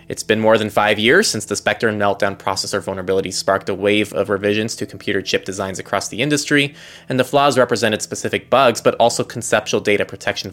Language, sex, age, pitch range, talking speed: English, male, 20-39, 100-125 Hz, 205 wpm